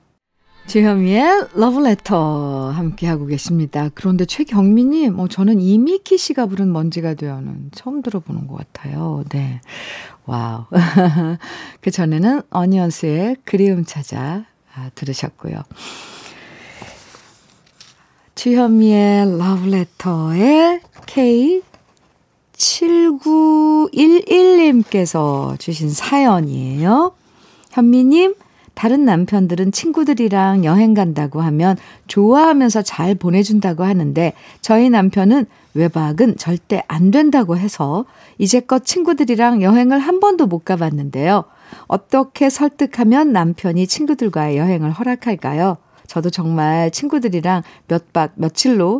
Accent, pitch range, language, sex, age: native, 170-260 Hz, Korean, female, 40-59